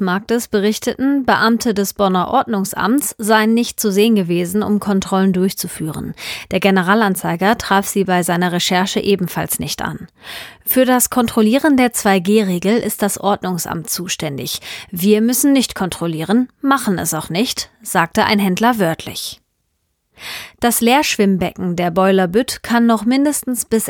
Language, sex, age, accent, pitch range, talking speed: German, female, 30-49, German, 185-230 Hz, 135 wpm